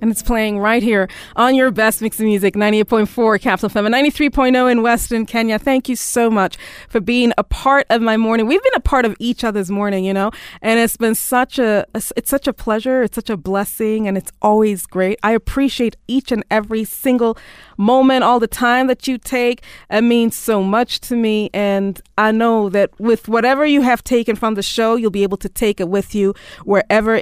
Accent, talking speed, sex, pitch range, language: American, 215 wpm, female, 200-245 Hz, English